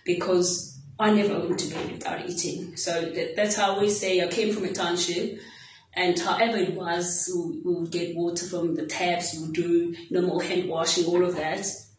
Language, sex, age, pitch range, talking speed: English, female, 20-39, 175-195 Hz, 205 wpm